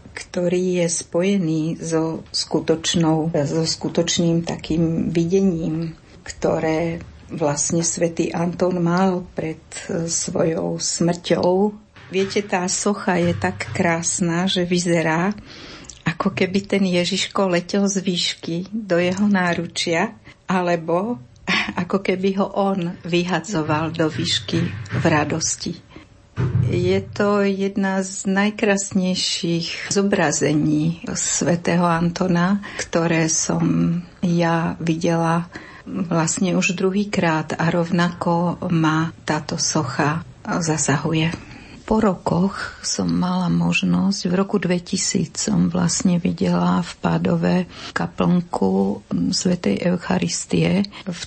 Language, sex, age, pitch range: Slovak, female, 60-79, 165-190 Hz